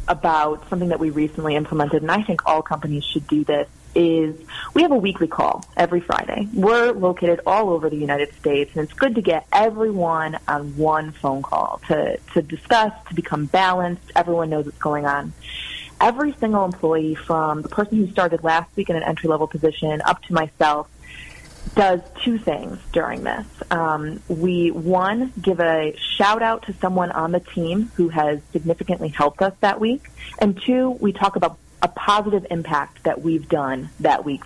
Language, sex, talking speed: English, female, 180 wpm